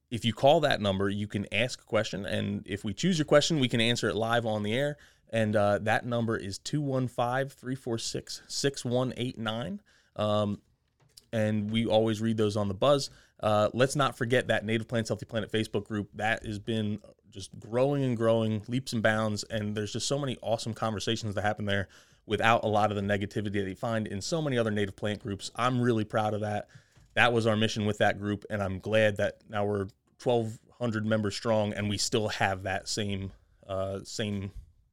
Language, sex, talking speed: English, male, 200 wpm